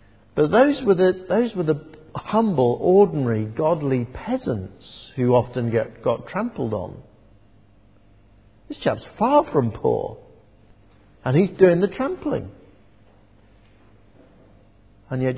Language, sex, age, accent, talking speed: English, male, 50-69, British, 100 wpm